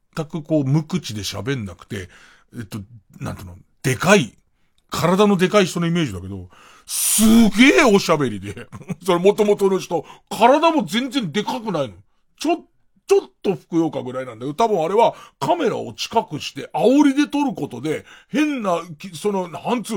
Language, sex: Japanese, male